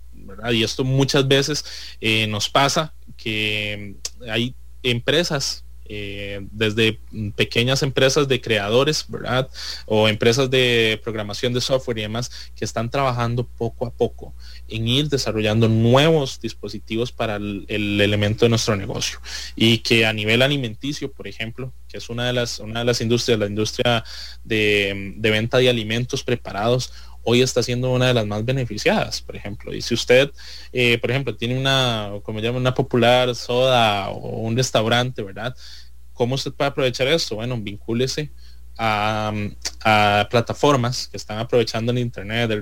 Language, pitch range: English, 105-125 Hz